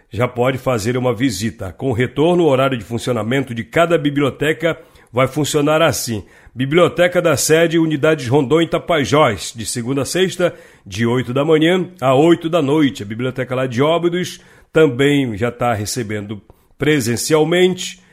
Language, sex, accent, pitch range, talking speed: Portuguese, male, Brazilian, 125-155 Hz, 150 wpm